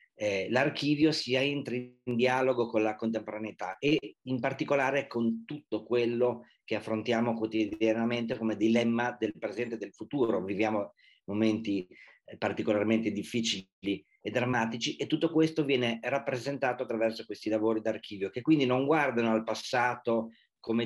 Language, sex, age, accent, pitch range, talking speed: Italian, male, 40-59, native, 110-135 Hz, 140 wpm